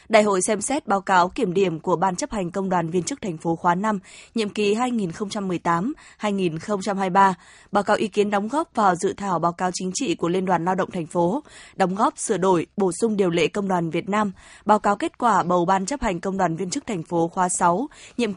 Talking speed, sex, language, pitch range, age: 235 wpm, female, Vietnamese, 185-220 Hz, 20-39